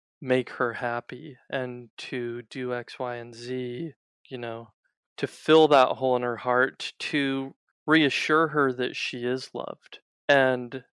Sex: male